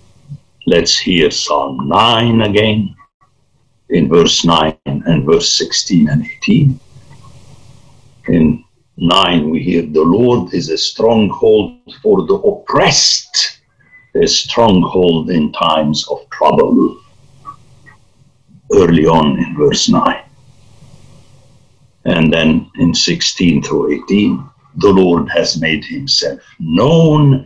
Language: English